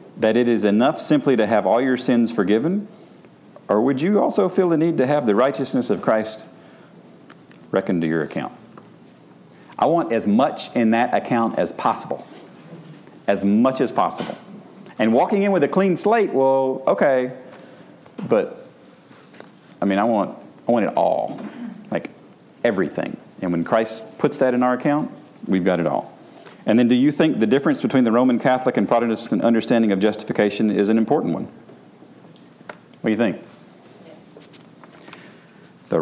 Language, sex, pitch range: English, male, 105-135 Hz